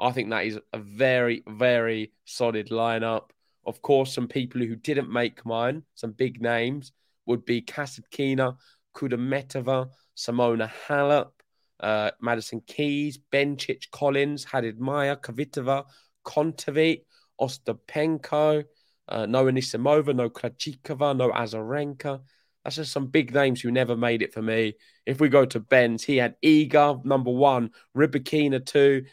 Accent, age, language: British, 20-39, English